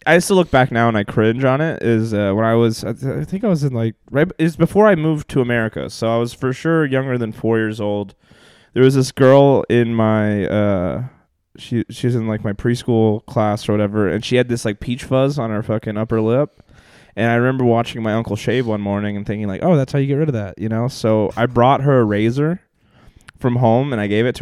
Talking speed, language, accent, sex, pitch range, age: 255 wpm, English, American, male, 110-135 Hz, 20-39